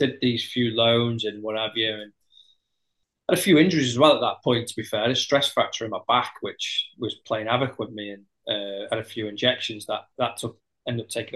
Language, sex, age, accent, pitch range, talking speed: English, male, 20-39, British, 105-125 Hz, 255 wpm